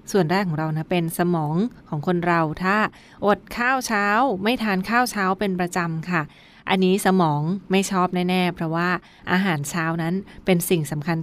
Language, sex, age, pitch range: Thai, female, 20-39, 170-195 Hz